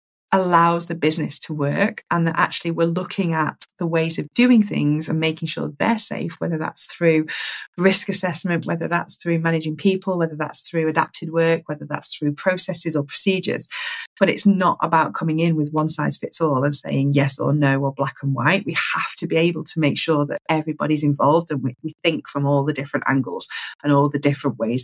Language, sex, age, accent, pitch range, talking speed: English, female, 30-49, British, 150-200 Hz, 210 wpm